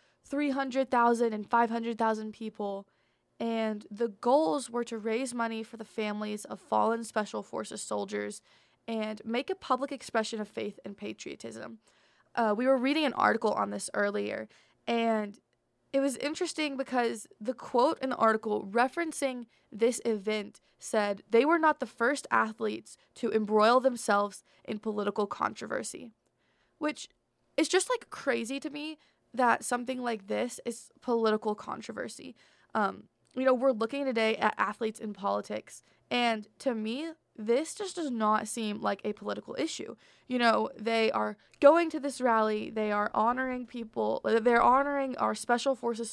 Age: 20-39